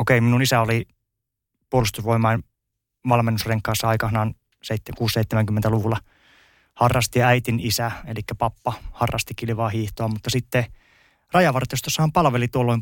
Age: 20-39